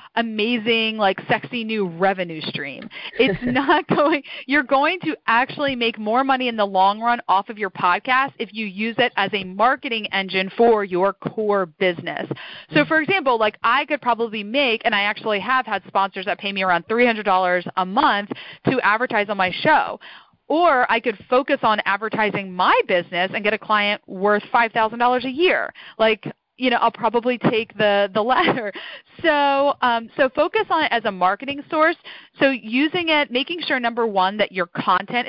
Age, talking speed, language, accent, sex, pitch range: 30-49, 180 wpm, English, American, female, 200-260 Hz